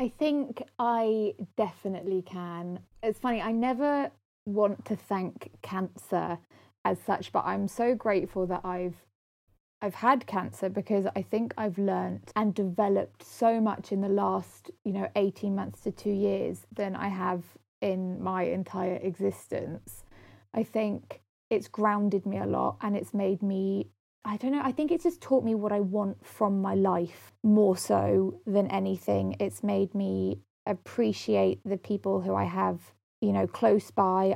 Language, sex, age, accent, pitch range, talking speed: English, female, 20-39, British, 180-210 Hz, 160 wpm